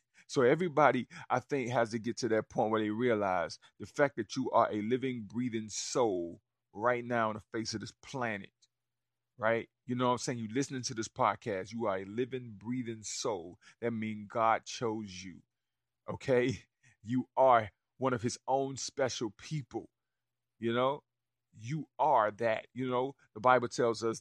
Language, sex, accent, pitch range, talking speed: English, male, American, 115-135 Hz, 180 wpm